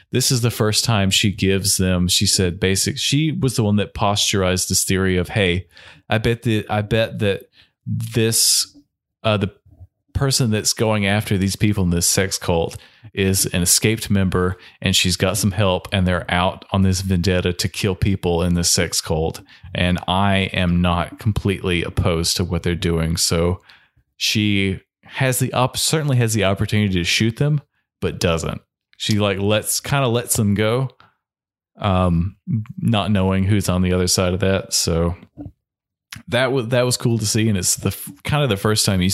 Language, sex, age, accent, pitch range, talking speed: English, male, 30-49, American, 90-110 Hz, 185 wpm